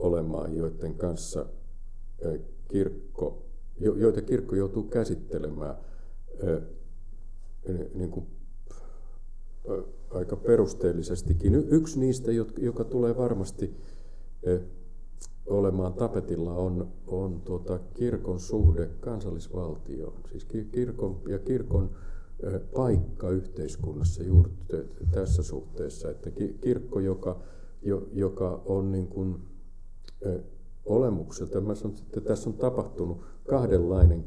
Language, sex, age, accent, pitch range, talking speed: Finnish, male, 50-69, native, 85-100 Hz, 85 wpm